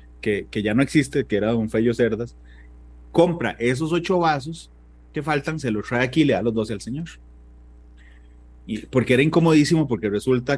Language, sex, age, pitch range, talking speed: Spanish, male, 30-49, 100-145 Hz, 185 wpm